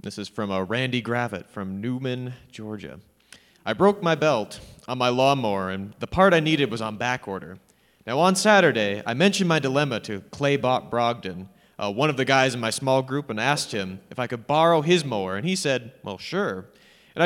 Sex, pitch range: male, 110-155 Hz